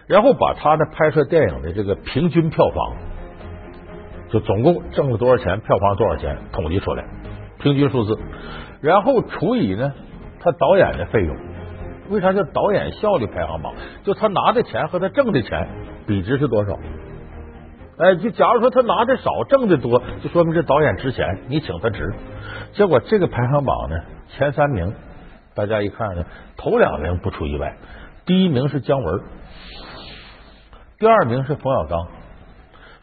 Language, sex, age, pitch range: Chinese, male, 60-79, 100-155 Hz